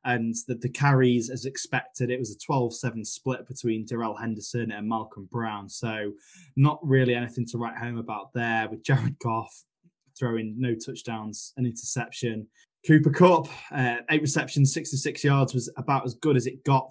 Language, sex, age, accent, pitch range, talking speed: English, male, 10-29, British, 115-140 Hz, 165 wpm